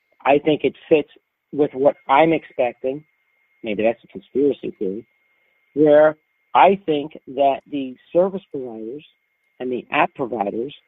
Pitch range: 130-160 Hz